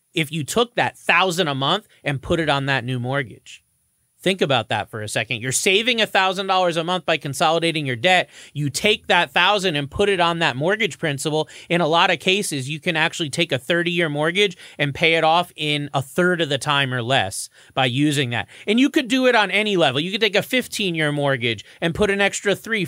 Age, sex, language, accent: 30-49, male, English, American